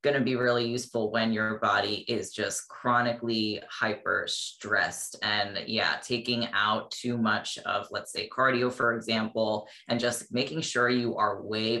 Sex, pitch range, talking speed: female, 110-125 Hz, 165 wpm